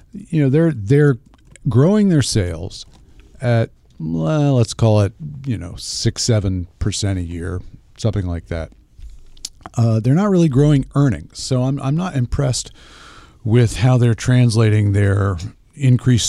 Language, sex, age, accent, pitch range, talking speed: English, male, 50-69, American, 100-125 Hz, 145 wpm